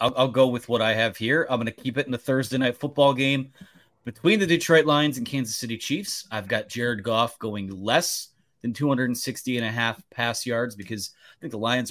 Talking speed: 225 wpm